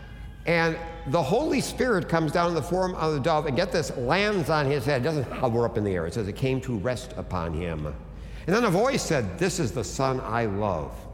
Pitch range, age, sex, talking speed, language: 100-155 Hz, 60-79, male, 235 wpm, English